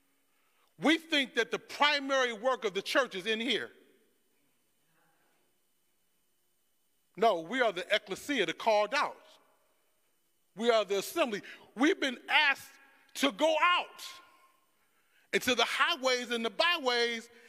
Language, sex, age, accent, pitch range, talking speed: English, male, 40-59, American, 270-365 Hz, 125 wpm